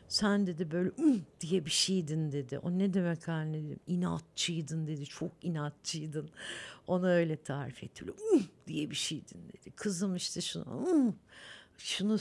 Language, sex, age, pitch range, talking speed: Turkish, female, 60-79, 145-180 Hz, 155 wpm